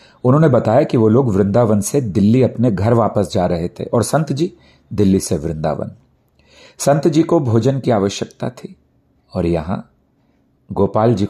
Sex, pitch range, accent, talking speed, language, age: male, 100-130 Hz, native, 165 wpm, Hindi, 40-59